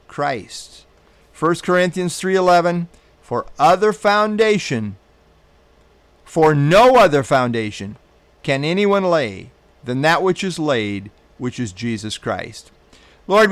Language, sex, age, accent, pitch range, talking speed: English, male, 50-69, American, 120-170 Hz, 105 wpm